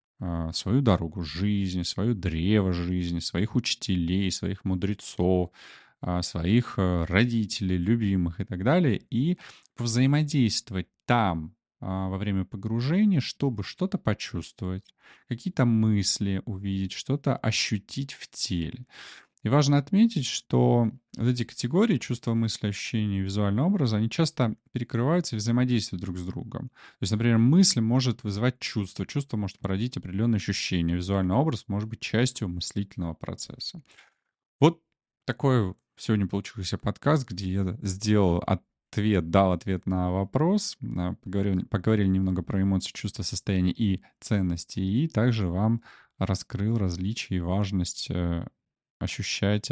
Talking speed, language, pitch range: 125 wpm, Russian, 90-120 Hz